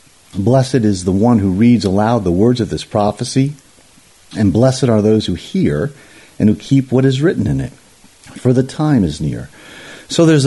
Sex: male